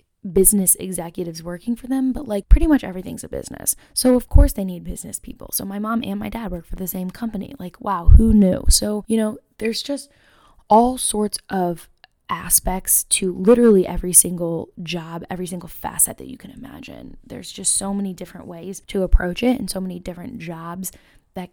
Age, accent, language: 10-29, American, English